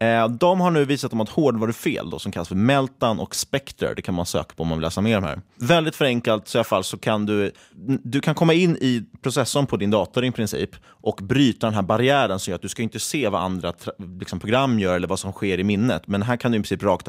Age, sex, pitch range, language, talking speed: 30-49, male, 100-135 Hz, Swedish, 265 wpm